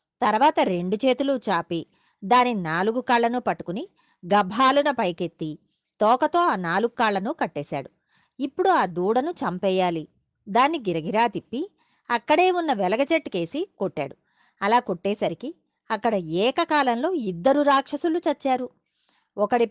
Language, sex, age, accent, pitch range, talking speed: Telugu, female, 30-49, native, 175-255 Hz, 105 wpm